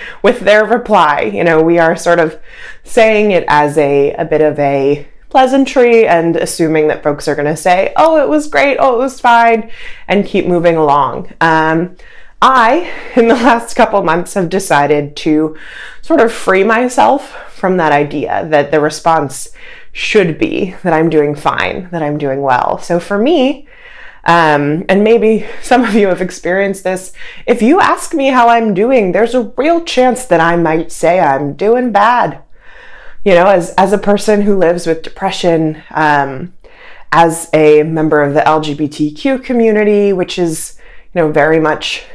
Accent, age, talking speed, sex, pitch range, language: American, 20-39, 170 wpm, female, 155-215 Hz, English